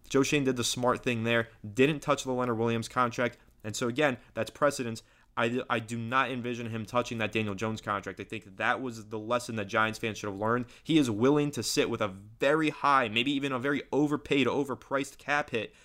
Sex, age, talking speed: male, 20-39, 220 wpm